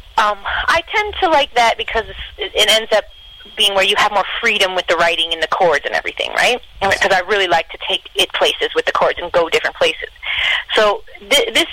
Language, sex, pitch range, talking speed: English, female, 175-250 Hz, 215 wpm